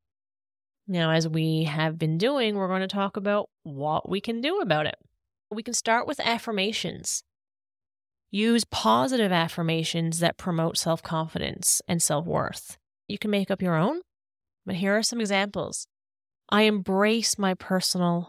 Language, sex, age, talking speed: English, female, 30-49, 150 wpm